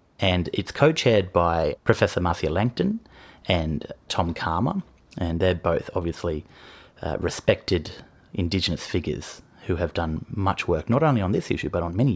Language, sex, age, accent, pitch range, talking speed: English, male, 30-49, Australian, 85-105 Hz, 155 wpm